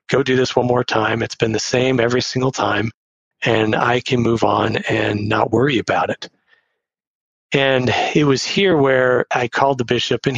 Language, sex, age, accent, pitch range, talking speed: English, male, 40-59, American, 110-125 Hz, 190 wpm